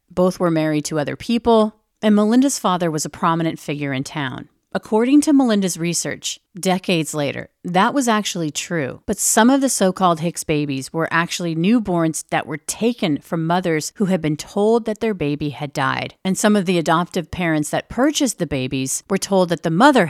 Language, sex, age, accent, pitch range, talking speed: English, female, 40-59, American, 155-210 Hz, 190 wpm